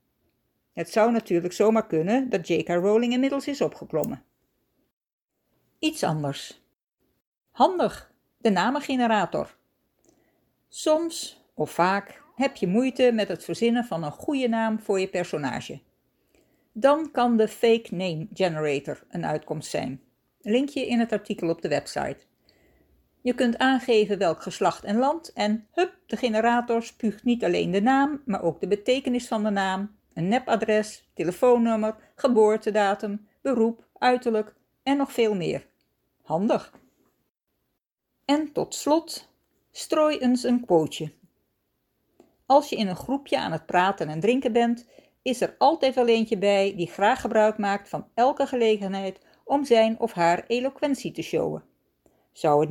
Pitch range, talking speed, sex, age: 195-255 Hz, 140 wpm, female, 60-79